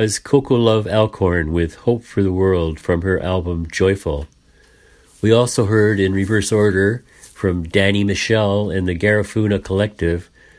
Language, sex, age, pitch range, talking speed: English, male, 50-69, 90-110 Hz, 145 wpm